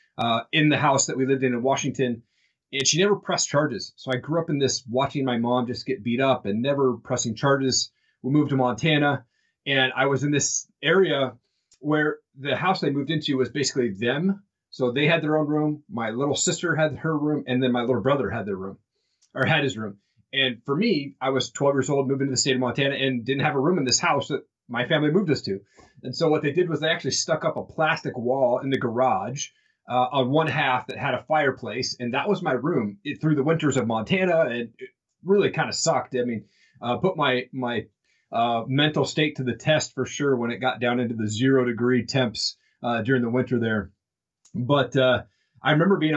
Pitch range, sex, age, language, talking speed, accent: 125-150 Hz, male, 30-49, English, 230 wpm, American